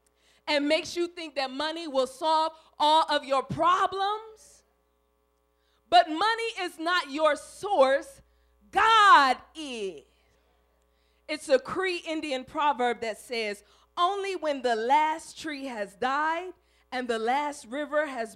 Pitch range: 225-340 Hz